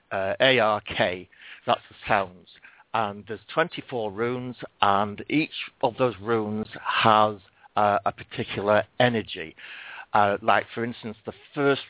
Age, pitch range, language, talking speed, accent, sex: 60-79, 105-140 Hz, English, 150 wpm, British, male